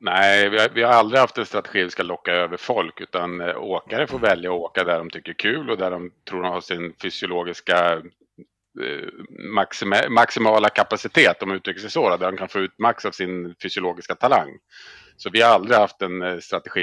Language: Swedish